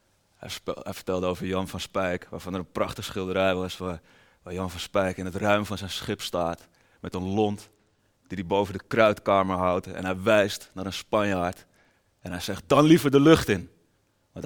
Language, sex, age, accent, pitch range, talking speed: Dutch, male, 20-39, Dutch, 95-105 Hz, 195 wpm